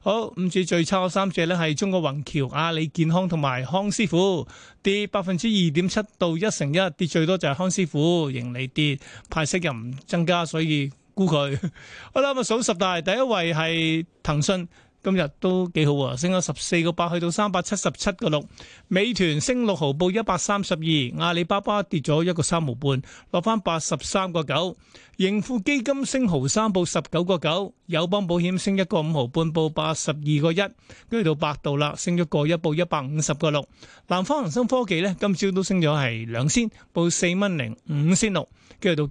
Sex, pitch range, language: male, 150-195 Hz, Chinese